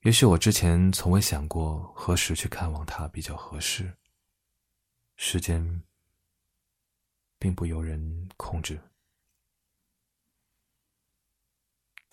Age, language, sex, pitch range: 20-39, Chinese, male, 80-100 Hz